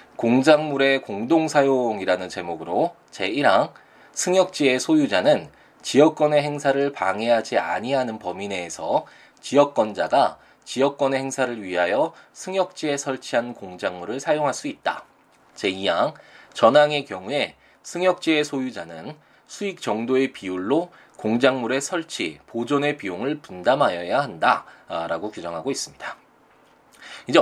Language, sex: Korean, male